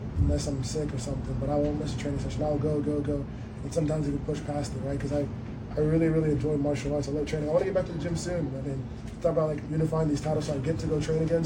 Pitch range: 140-155 Hz